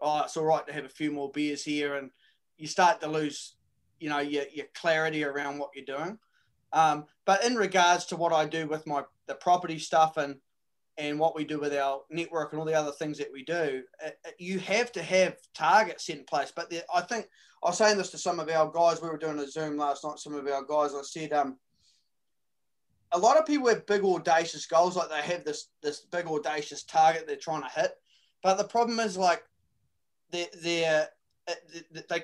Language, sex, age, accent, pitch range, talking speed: English, male, 20-39, Australian, 150-190 Hz, 220 wpm